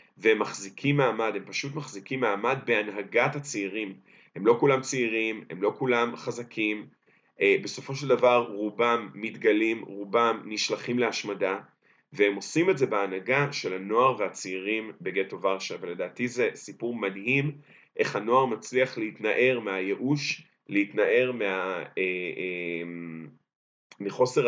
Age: 30-49